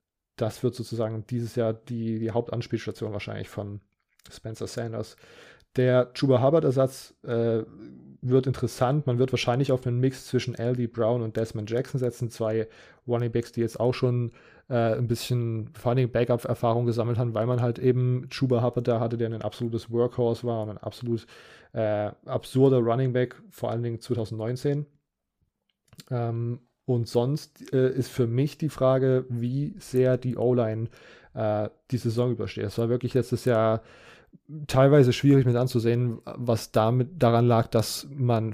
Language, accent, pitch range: German, German, 115-125 Hz